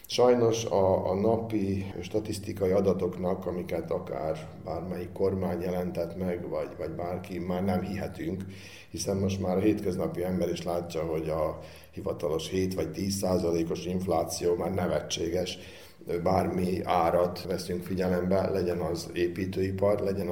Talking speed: 125 wpm